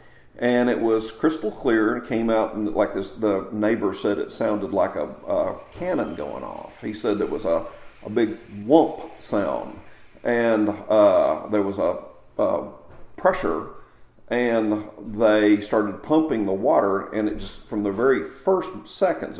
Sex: male